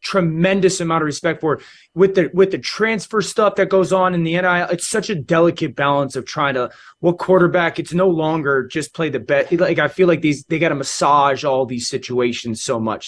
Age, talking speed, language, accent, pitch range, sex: 20-39, 220 wpm, English, American, 145-180 Hz, male